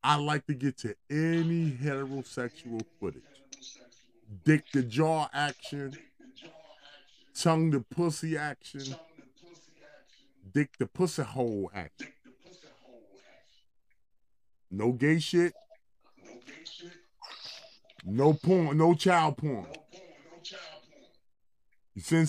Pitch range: 135-175 Hz